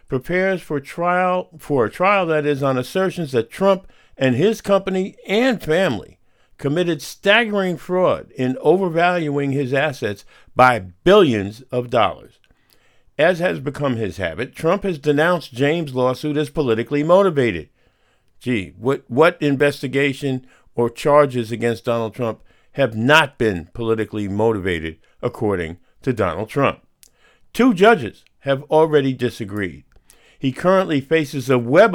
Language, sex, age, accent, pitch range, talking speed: English, male, 50-69, American, 120-165 Hz, 130 wpm